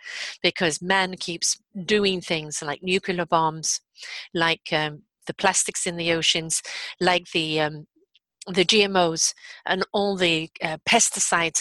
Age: 50-69